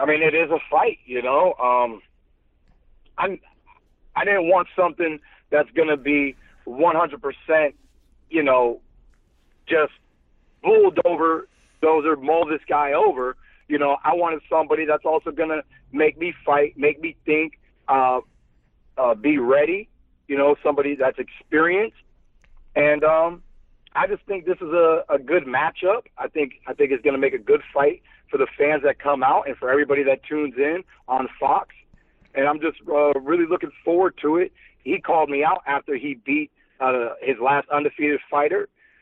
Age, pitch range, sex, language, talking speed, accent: 40-59, 140-180 Hz, male, English, 165 wpm, American